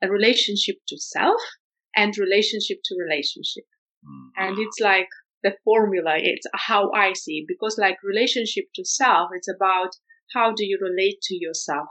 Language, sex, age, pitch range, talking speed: English, female, 30-49, 190-275 Hz, 155 wpm